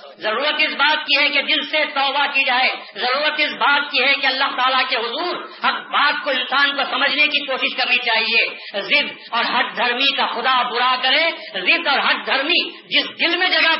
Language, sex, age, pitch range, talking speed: Urdu, female, 50-69, 250-295 Hz, 205 wpm